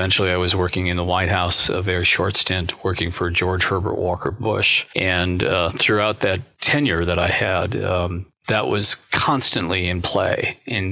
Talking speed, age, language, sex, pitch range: 180 wpm, 40-59, English, male, 90-105 Hz